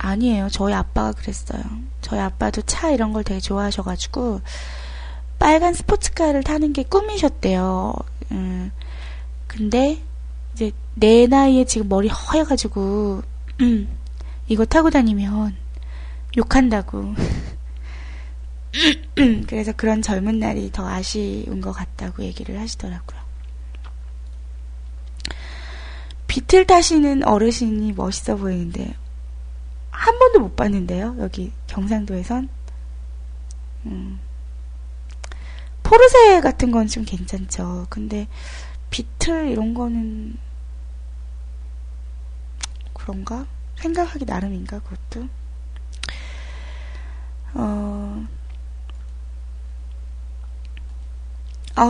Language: Korean